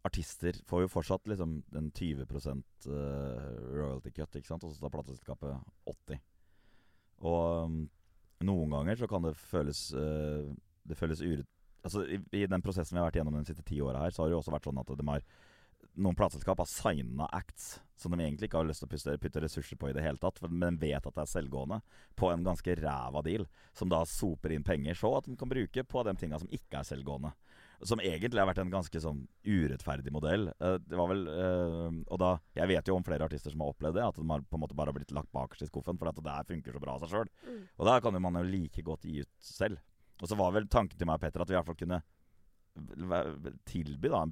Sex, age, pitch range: male, 30-49, 75-90 Hz